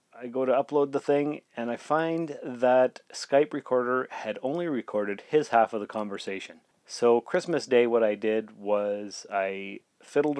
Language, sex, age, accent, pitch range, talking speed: English, male, 30-49, American, 105-130 Hz, 165 wpm